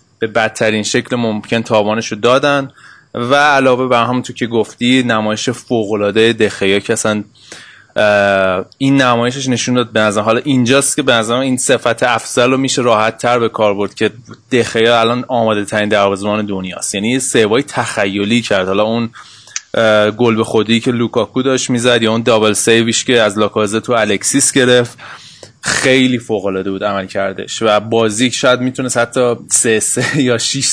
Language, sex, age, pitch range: Persian, male, 20-39, 110-125 Hz